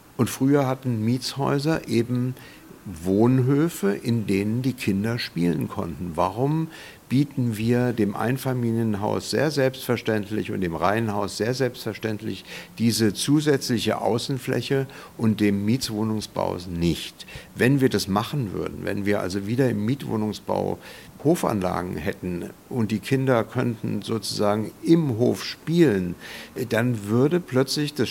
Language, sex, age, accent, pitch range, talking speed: German, male, 60-79, German, 105-125 Hz, 120 wpm